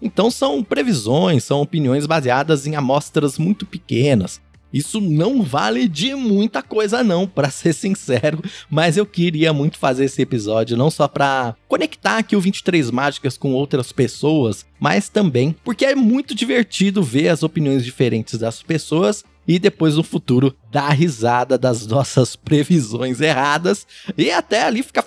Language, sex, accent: Portuguese, male, Brazilian